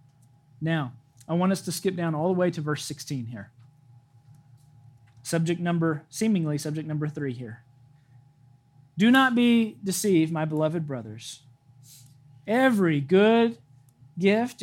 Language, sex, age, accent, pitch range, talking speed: English, male, 40-59, American, 130-175 Hz, 125 wpm